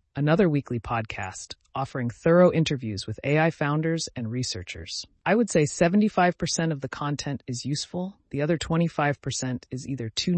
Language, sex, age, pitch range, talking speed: English, female, 30-49, 115-165 Hz, 150 wpm